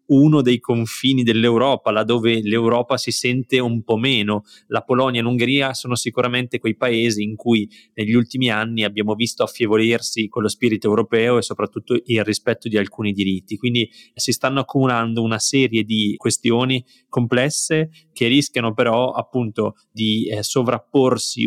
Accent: native